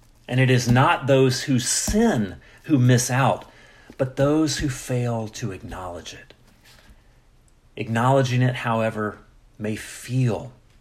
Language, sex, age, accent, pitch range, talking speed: English, male, 40-59, American, 105-130 Hz, 120 wpm